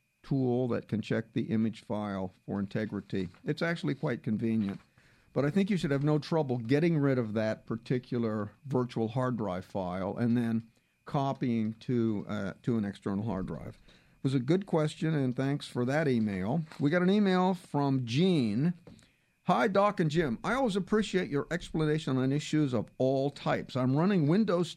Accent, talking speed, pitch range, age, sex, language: American, 175 wpm, 120-170 Hz, 50-69, male, English